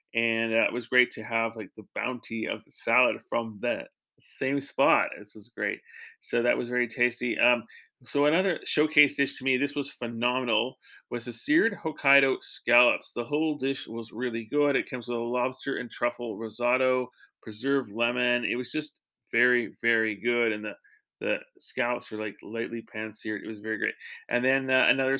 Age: 30-49